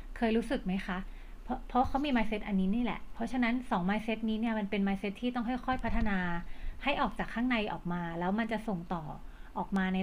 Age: 30-49